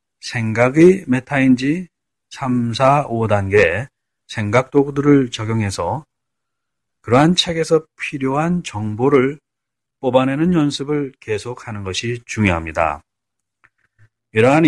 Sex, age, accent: male, 30-49, native